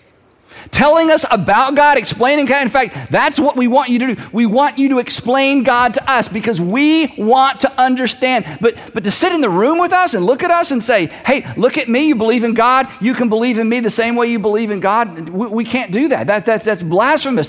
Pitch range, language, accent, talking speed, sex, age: 200-275 Hz, English, American, 245 wpm, male, 50-69